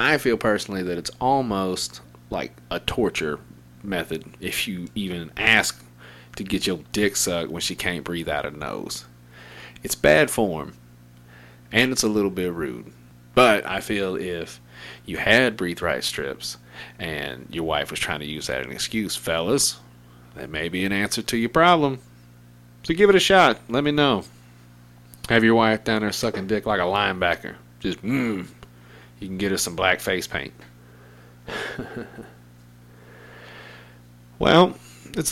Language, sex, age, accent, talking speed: English, male, 30-49, American, 160 wpm